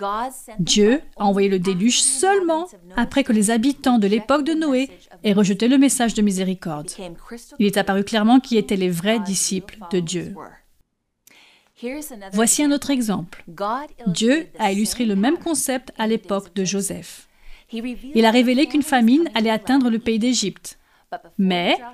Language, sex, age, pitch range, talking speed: French, female, 30-49, 195-255 Hz, 155 wpm